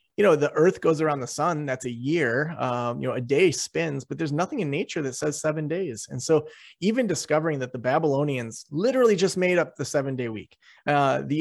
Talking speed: 220 wpm